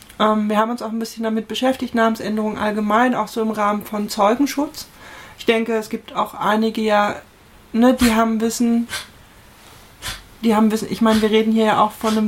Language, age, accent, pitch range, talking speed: German, 30-49, German, 215-235 Hz, 175 wpm